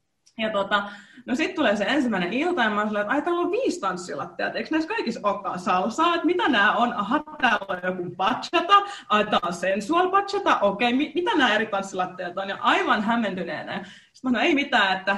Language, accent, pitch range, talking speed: Finnish, native, 200-315 Hz, 185 wpm